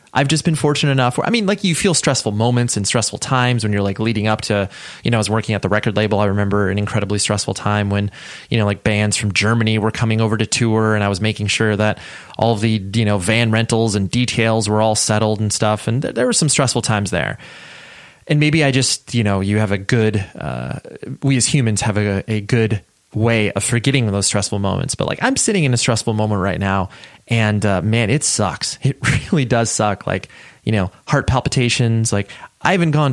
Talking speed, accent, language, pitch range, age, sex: 230 wpm, American, English, 105-125 Hz, 20-39, male